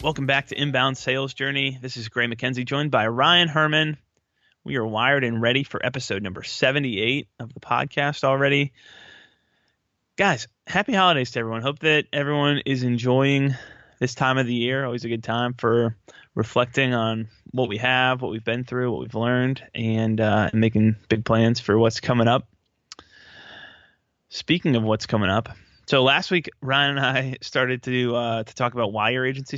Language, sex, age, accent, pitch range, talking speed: English, male, 20-39, American, 115-135 Hz, 180 wpm